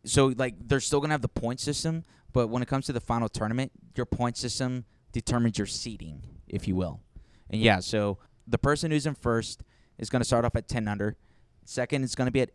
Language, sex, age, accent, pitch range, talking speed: English, male, 10-29, American, 110-135 Hz, 235 wpm